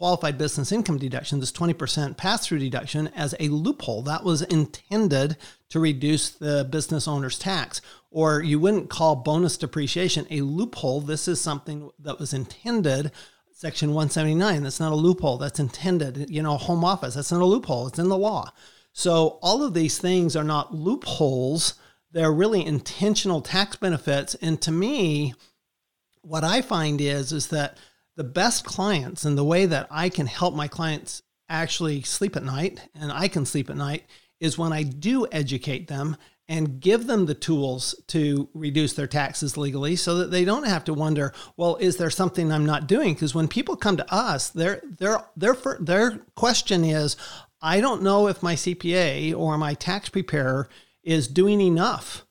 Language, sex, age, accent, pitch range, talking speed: English, male, 40-59, American, 145-180 Hz, 175 wpm